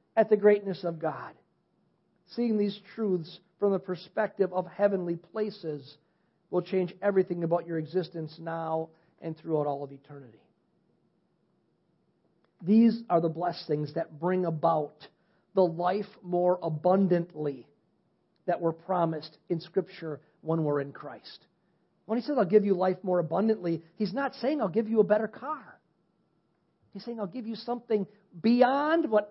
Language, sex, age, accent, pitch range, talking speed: English, male, 40-59, American, 165-200 Hz, 145 wpm